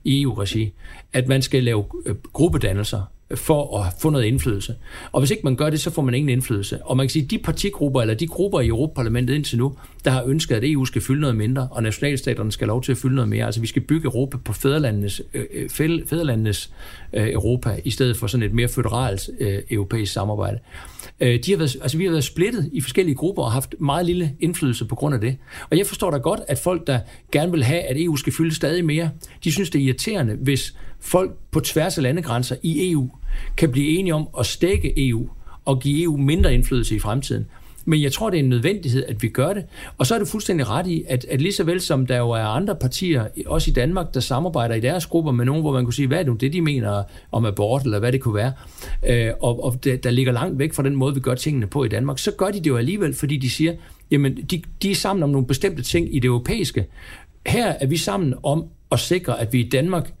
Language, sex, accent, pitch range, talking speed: Danish, male, native, 120-155 Hz, 240 wpm